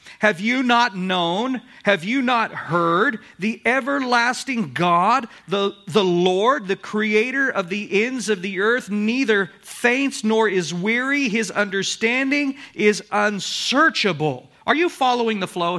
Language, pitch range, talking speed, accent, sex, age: English, 170-230 Hz, 135 wpm, American, male, 50-69